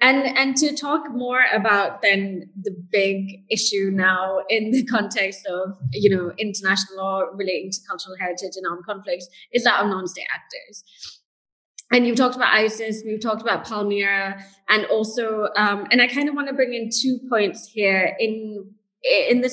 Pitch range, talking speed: 195-245 Hz, 175 wpm